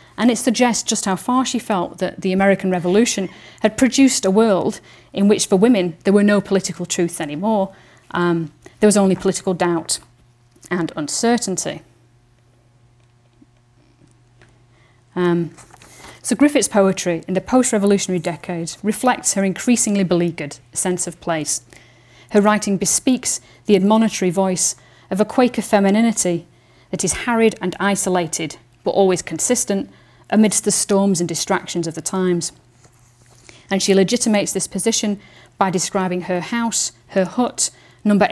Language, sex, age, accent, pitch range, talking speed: English, female, 40-59, British, 170-205 Hz, 135 wpm